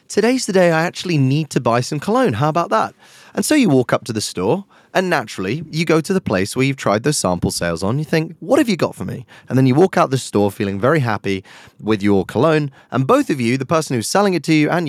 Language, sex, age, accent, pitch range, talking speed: English, male, 30-49, British, 105-160 Hz, 275 wpm